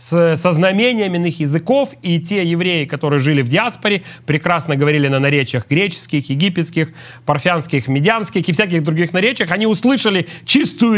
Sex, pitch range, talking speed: male, 150-200 Hz, 150 wpm